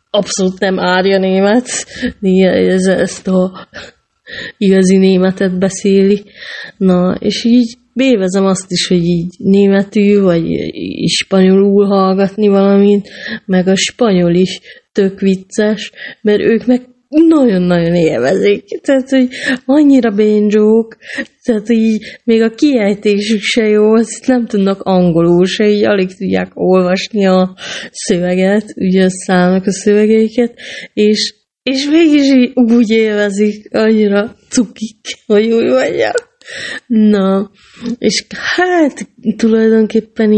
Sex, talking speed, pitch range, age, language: female, 110 wpm, 185-220 Hz, 20-39, Hungarian